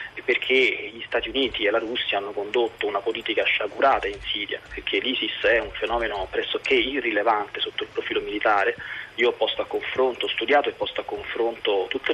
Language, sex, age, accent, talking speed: Italian, male, 20-39, native, 180 wpm